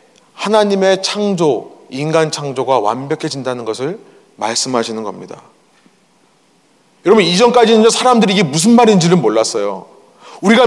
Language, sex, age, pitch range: Korean, male, 30-49, 180-245 Hz